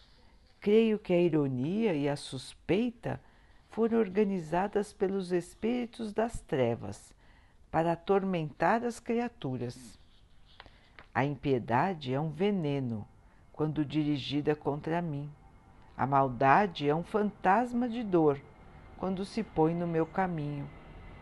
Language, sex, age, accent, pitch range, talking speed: Portuguese, female, 60-79, Brazilian, 140-215 Hz, 110 wpm